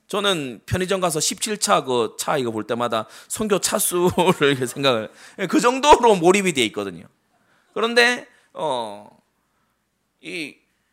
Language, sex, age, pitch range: Korean, male, 30-49, 140-215 Hz